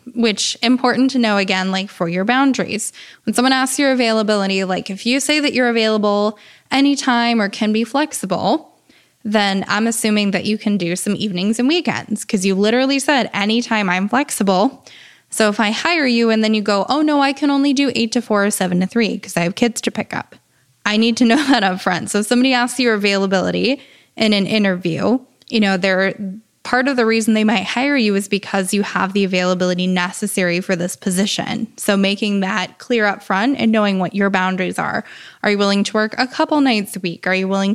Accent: American